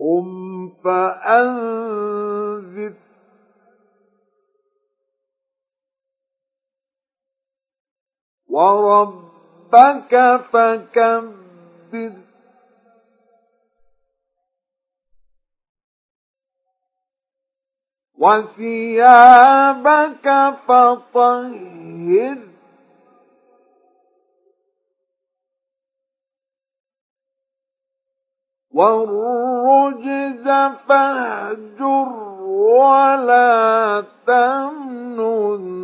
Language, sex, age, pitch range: Arabic, male, 50-69, 205-270 Hz